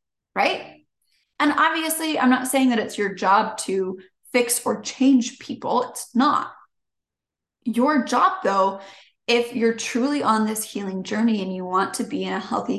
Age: 20-39